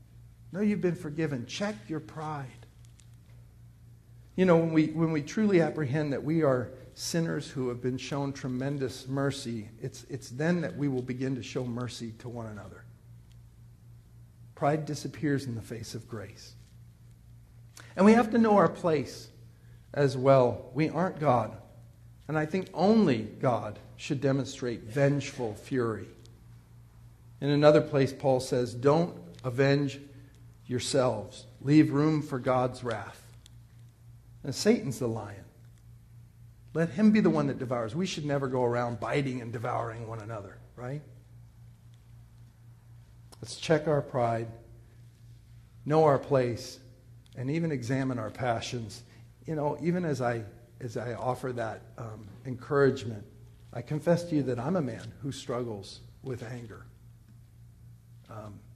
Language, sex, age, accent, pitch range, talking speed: English, male, 50-69, American, 115-140 Hz, 140 wpm